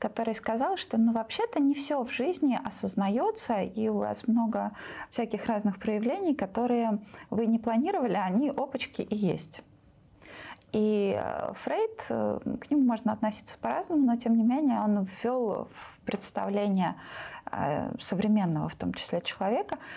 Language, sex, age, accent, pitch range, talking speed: Russian, female, 20-39, native, 205-255 Hz, 135 wpm